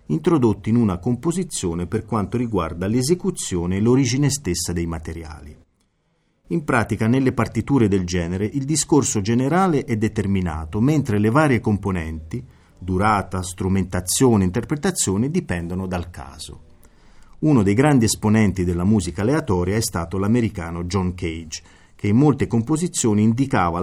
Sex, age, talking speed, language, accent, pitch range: male, 40-59, 130 wpm, Italian, native, 90-125 Hz